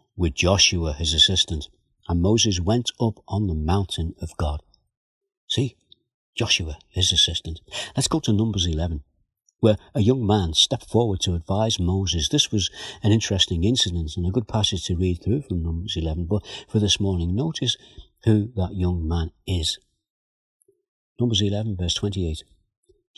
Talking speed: 155 wpm